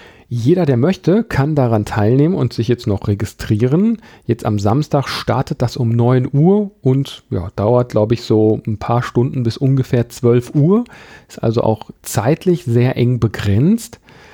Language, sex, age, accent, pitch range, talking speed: German, male, 40-59, German, 110-135 Hz, 165 wpm